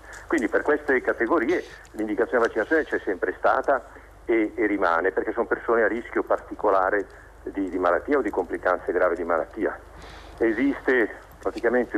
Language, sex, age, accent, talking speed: Italian, male, 50-69, native, 145 wpm